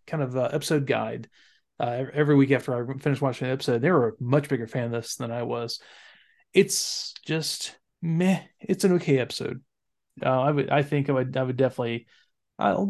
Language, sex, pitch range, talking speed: English, male, 130-150 Hz, 200 wpm